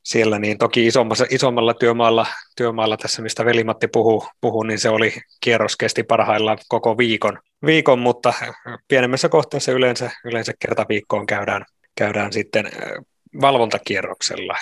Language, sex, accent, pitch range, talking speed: Finnish, male, native, 110-125 Hz, 115 wpm